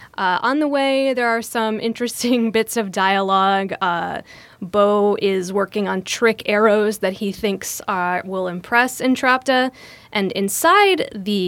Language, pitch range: English, 195-235 Hz